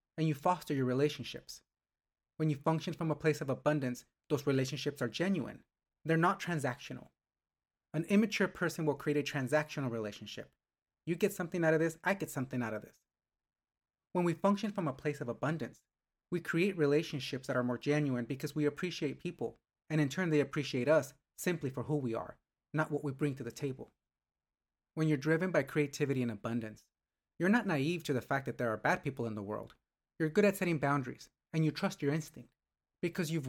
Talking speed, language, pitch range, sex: 195 wpm, English, 130-170 Hz, male